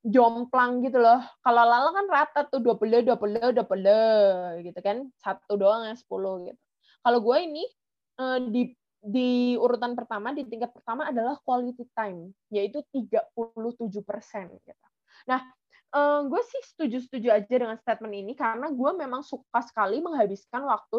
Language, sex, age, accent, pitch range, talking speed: Indonesian, female, 20-39, native, 210-255 Hz, 140 wpm